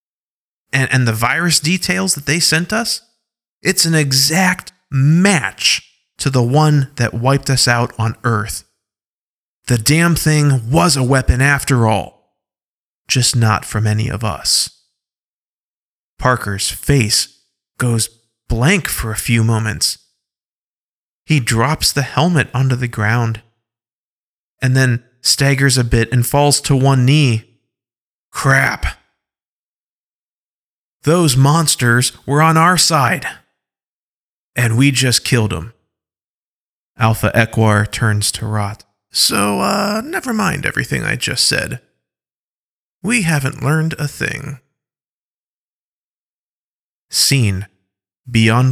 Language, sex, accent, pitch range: English, male, American, 110-140 Hz